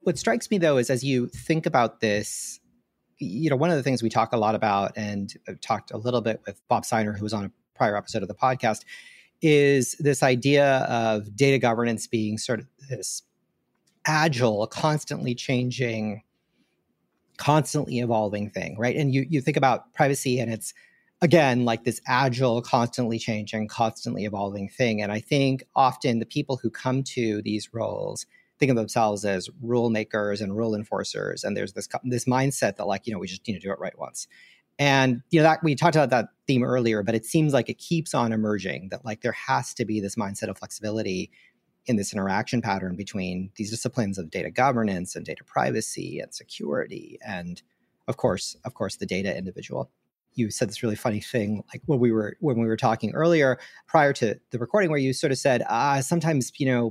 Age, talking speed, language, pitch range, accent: 40-59, 200 wpm, English, 110-135 Hz, American